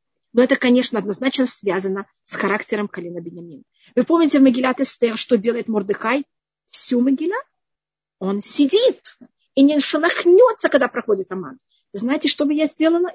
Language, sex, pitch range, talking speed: Russian, female, 230-290 Hz, 145 wpm